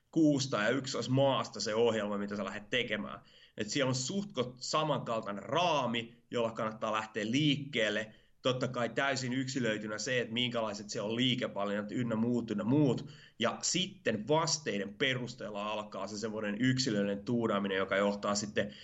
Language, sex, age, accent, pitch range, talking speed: Finnish, male, 30-49, native, 110-130 Hz, 145 wpm